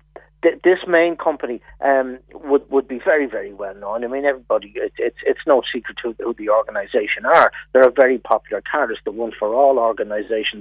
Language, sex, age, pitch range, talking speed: English, male, 60-79, 130-175 Hz, 185 wpm